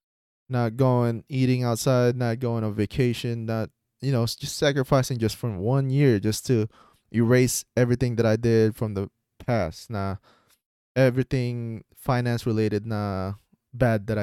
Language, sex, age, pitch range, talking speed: Filipino, male, 20-39, 100-120 Hz, 150 wpm